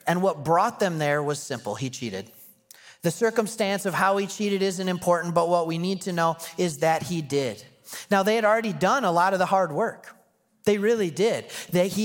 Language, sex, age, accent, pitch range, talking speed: English, male, 30-49, American, 170-205 Hz, 210 wpm